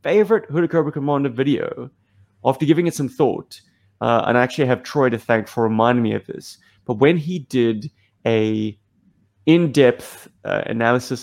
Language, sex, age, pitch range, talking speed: English, male, 20-39, 110-140 Hz, 160 wpm